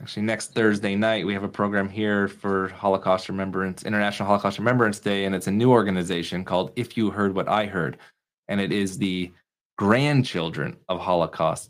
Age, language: 20-39, English